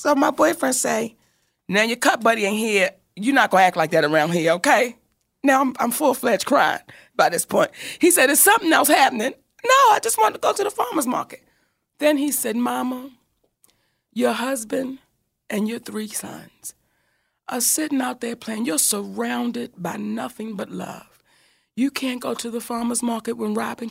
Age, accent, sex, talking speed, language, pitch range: 40-59, American, female, 185 wpm, English, 230-320 Hz